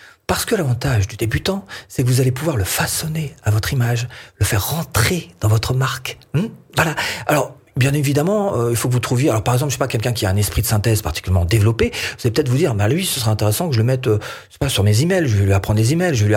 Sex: male